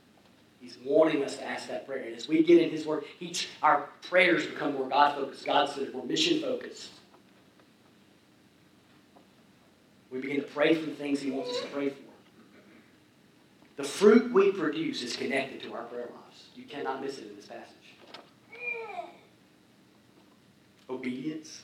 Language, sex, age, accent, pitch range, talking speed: English, male, 40-59, American, 140-225 Hz, 145 wpm